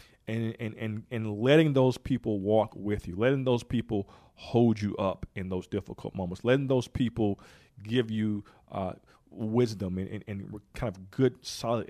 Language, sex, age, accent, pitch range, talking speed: English, male, 40-59, American, 100-120 Hz, 170 wpm